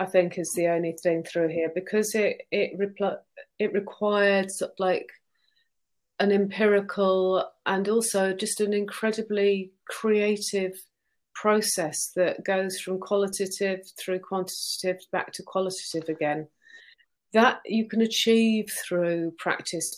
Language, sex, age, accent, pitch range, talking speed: English, female, 30-49, British, 170-200 Hz, 115 wpm